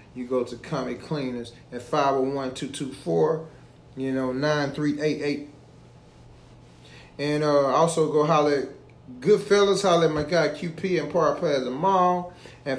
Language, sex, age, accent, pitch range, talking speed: English, male, 30-49, American, 145-170 Hz, 115 wpm